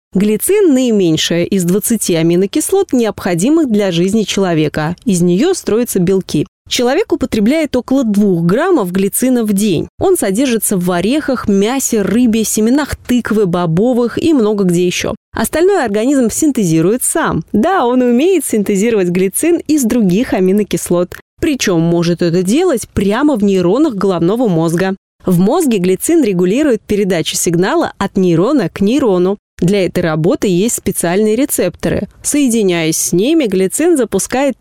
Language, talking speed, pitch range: Russian, 130 wpm, 185-265 Hz